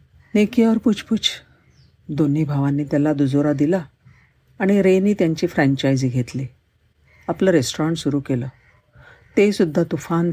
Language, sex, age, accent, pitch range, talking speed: Marathi, female, 50-69, native, 140-180 Hz, 75 wpm